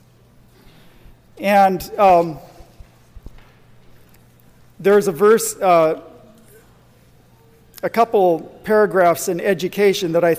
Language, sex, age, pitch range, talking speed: English, male, 50-69, 170-205 Hz, 75 wpm